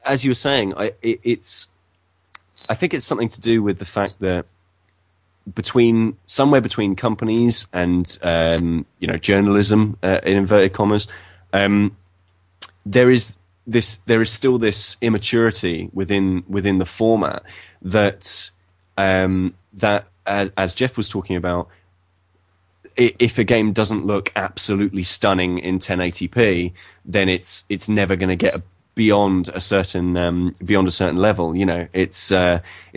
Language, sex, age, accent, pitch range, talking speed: English, male, 20-39, British, 90-110 Hz, 145 wpm